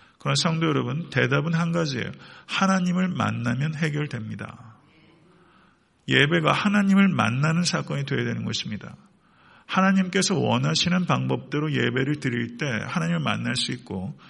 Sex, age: male, 50-69